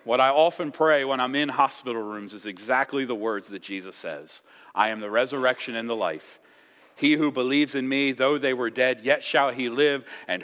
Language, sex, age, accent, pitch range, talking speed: English, male, 40-59, American, 125-165 Hz, 215 wpm